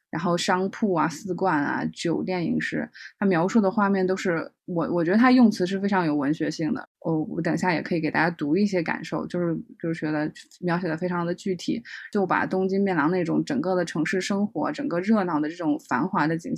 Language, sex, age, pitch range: Chinese, female, 20-39, 170-210 Hz